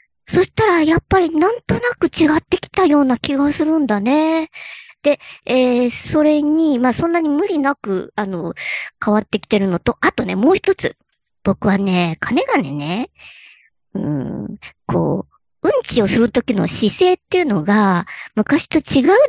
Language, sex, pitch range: Japanese, male, 210-320 Hz